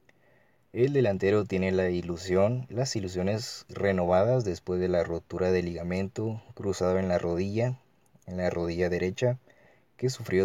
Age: 30-49